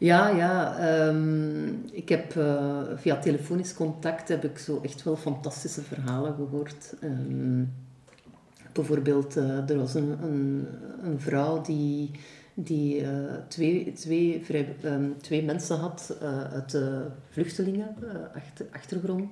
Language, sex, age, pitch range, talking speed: Dutch, female, 50-69, 140-160 Hz, 125 wpm